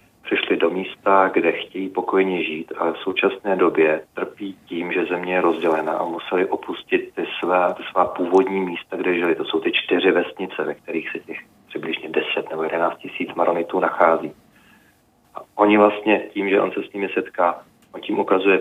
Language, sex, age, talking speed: Czech, male, 40-59, 185 wpm